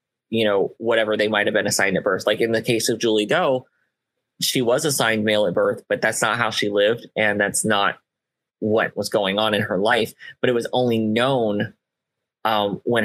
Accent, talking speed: American, 210 wpm